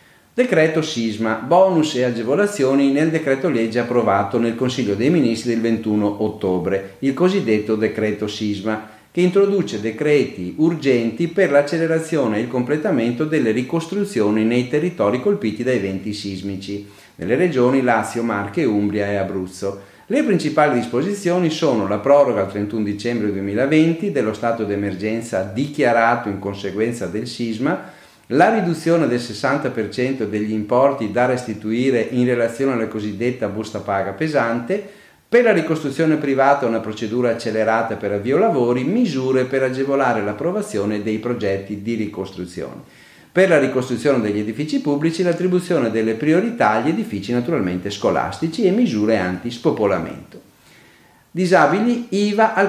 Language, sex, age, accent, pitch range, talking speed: Italian, male, 40-59, native, 110-150 Hz, 130 wpm